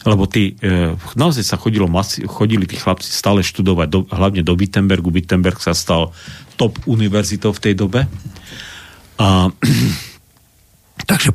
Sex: male